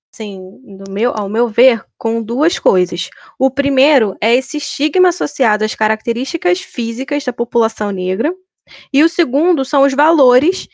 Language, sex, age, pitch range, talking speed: Portuguese, female, 10-29, 220-285 Hz, 150 wpm